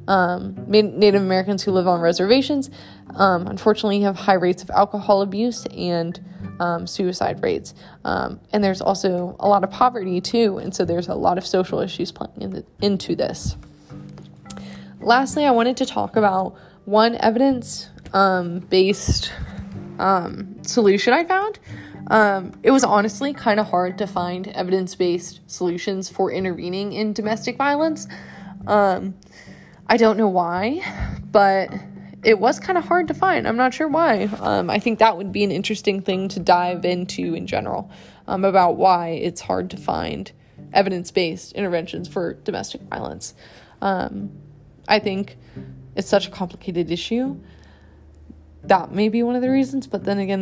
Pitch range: 180-220 Hz